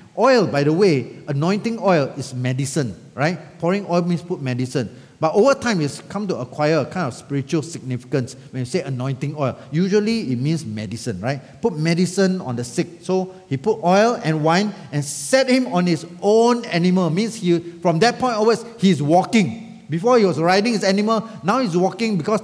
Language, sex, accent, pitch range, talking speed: English, male, Malaysian, 155-215 Hz, 195 wpm